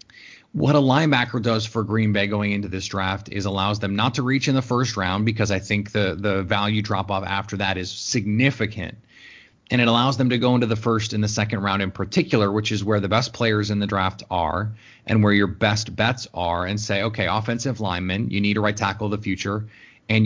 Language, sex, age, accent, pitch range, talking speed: English, male, 30-49, American, 100-115 Hz, 230 wpm